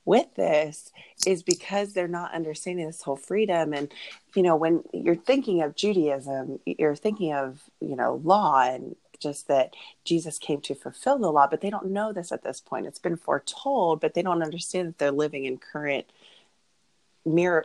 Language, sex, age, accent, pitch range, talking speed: English, female, 30-49, American, 140-180 Hz, 185 wpm